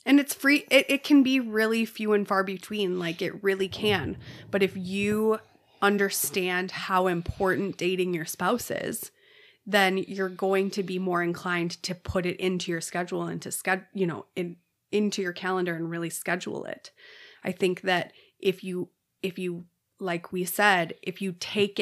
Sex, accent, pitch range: female, American, 175-205 Hz